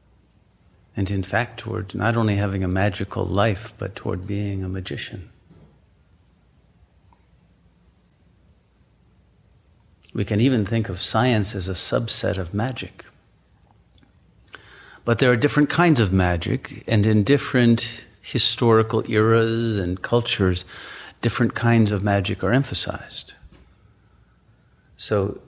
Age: 50-69